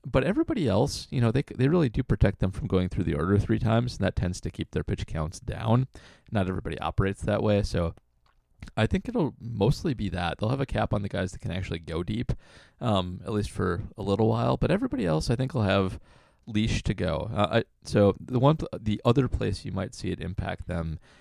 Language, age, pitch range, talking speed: English, 30-49, 90-115 Hz, 230 wpm